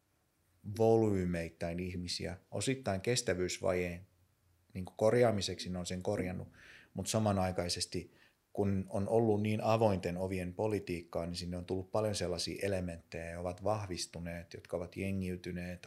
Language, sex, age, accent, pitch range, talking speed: Finnish, male, 30-49, native, 90-100 Hz, 120 wpm